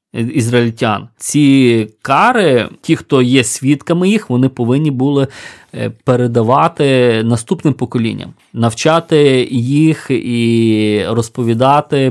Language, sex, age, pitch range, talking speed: Ukrainian, male, 20-39, 125-150 Hz, 90 wpm